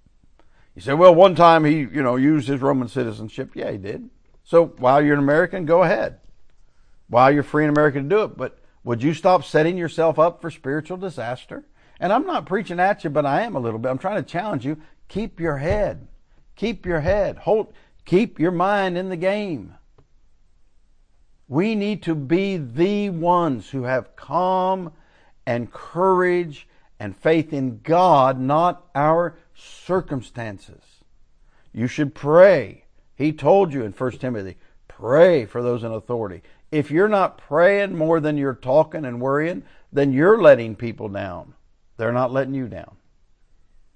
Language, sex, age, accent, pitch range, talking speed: English, male, 60-79, American, 125-170 Hz, 165 wpm